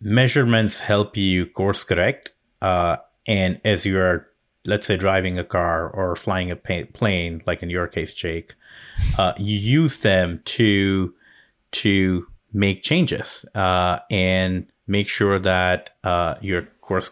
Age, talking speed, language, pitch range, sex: 30-49, 135 wpm, English, 90-105 Hz, male